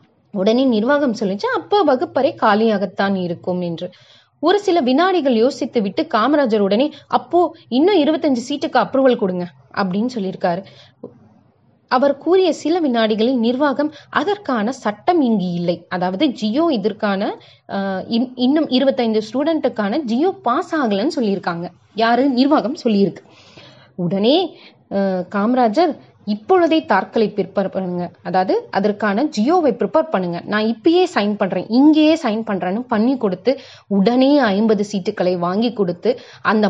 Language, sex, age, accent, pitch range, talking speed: Tamil, female, 30-49, native, 190-265 Hz, 70 wpm